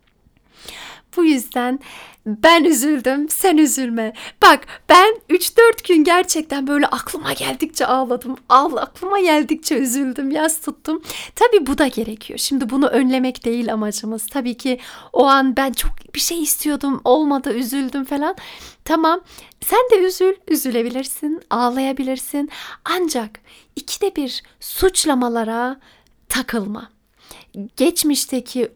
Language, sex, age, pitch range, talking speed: Turkish, female, 40-59, 245-305 Hz, 115 wpm